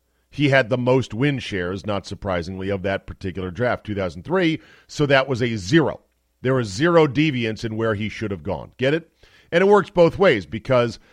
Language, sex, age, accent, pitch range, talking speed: English, male, 40-59, American, 95-140 Hz, 195 wpm